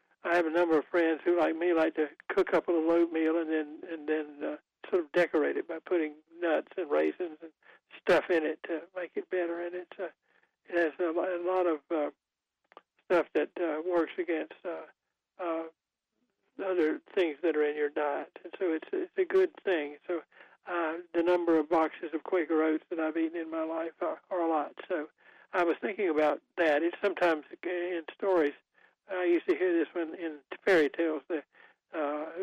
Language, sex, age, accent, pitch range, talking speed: English, male, 60-79, American, 160-185 Hz, 200 wpm